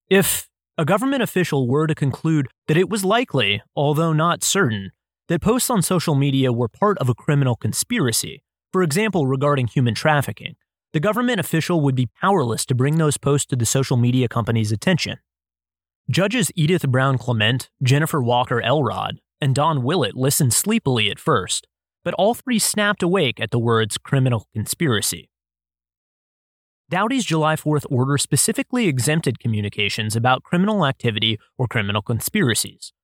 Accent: American